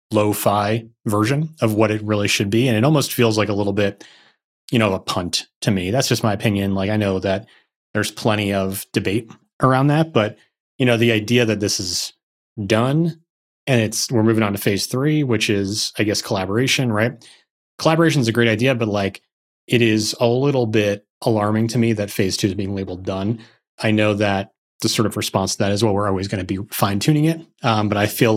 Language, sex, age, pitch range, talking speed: English, male, 30-49, 100-120 Hz, 220 wpm